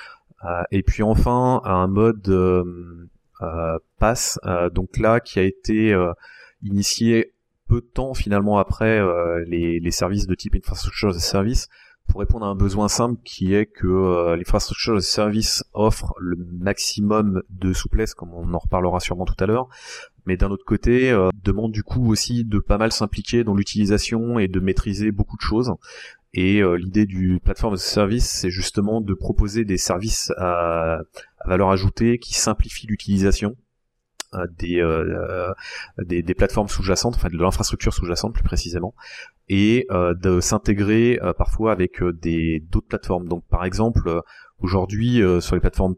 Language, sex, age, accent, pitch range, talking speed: English, male, 30-49, French, 90-110 Hz, 170 wpm